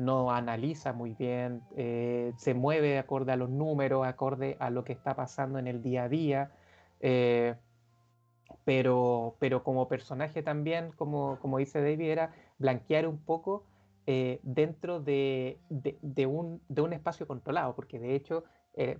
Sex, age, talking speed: male, 30-49, 160 wpm